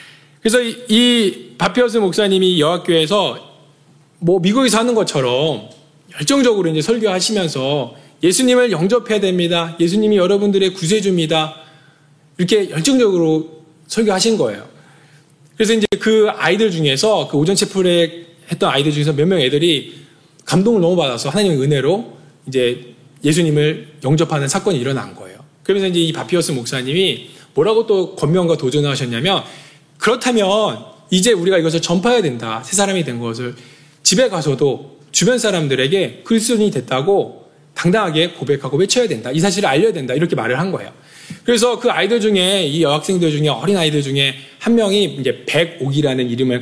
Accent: native